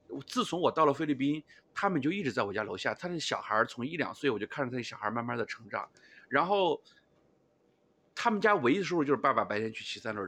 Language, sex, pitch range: Chinese, male, 120-180 Hz